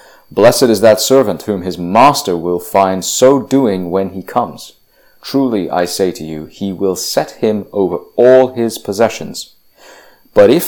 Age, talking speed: 30-49, 165 wpm